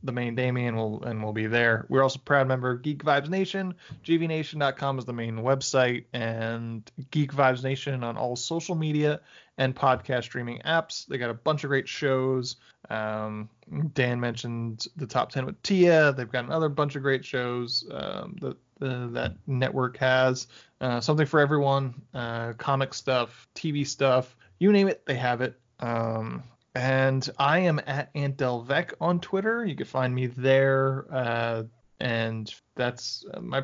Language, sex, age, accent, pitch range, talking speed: English, male, 20-39, American, 125-150 Hz, 170 wpm